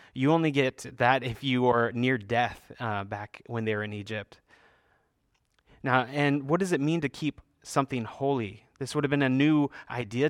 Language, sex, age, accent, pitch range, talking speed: English, male, 30-49, American, 125-165 Hz, 190 wpm